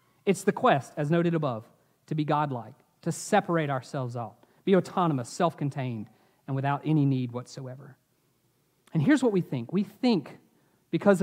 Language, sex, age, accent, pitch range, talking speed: English, male, 40-59, American, 160-215 Hz, 155 wpm